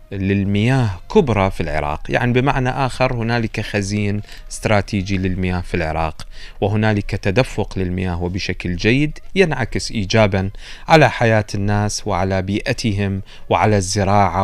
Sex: male